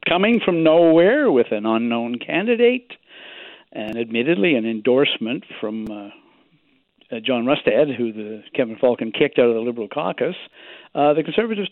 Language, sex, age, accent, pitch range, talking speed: English, male, 60-79, American, 125-170 Hz, 150 wpm